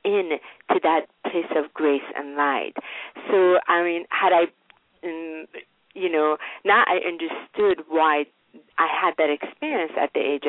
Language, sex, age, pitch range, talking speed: English, female, 40-59, 150-205 Hz, 150 wpm